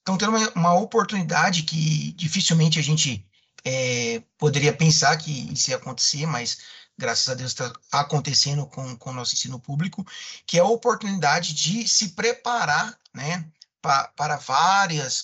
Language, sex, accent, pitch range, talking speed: Portuguese, male, Brazilian, 145-185 Hz, 145 wpm